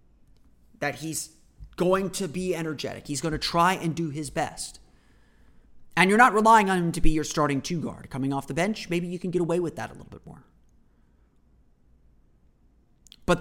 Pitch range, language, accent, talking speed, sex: 125-175 Hz, English, American, 190 wpm, male